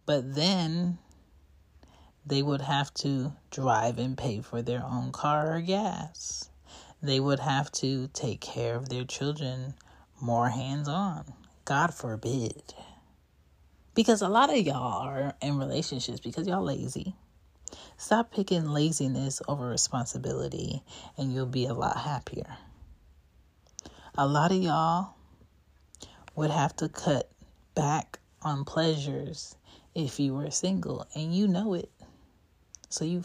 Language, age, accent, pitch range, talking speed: English, 30-49, American, 115-160 Hz, 130 wpm